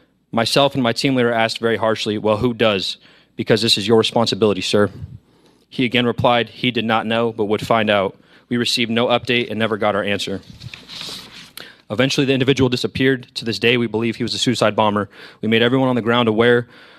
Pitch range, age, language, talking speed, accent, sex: 110-130 Hz, 30-49, English, 205 wpm, American, male